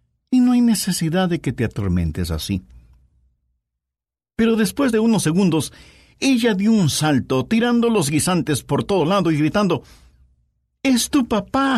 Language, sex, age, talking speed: Spanish, male, 60-79, 150 wpm